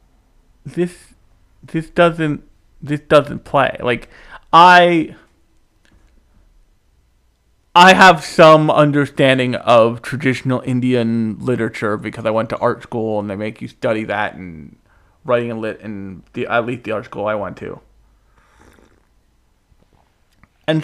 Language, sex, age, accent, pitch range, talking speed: English, male, 40-59, American, 110-150 Hz, 115 wpm